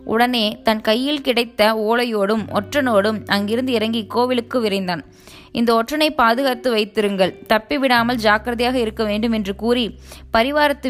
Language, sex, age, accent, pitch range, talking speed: Tamil, female, 20-39, native, 205-245 Hz, 120 wpm